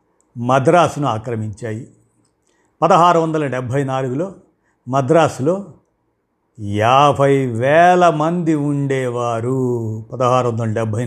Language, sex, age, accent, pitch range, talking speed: Telugu, male, 50-69, native, 120-155 Hz, 75 wpm